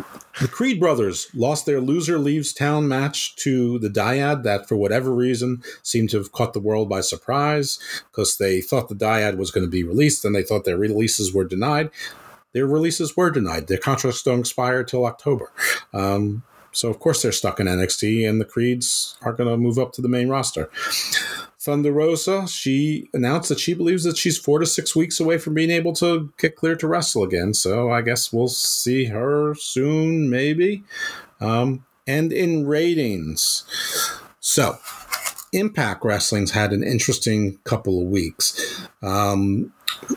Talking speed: 175 wpm